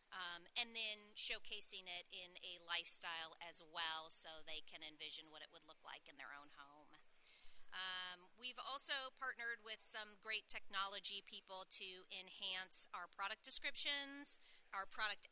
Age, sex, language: 30-49, female, English